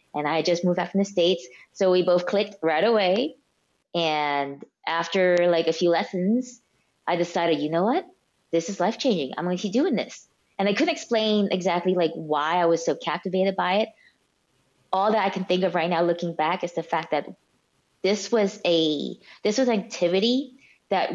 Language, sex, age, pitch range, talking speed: English, female, 20-39, 170-215 Hz, 195 wpm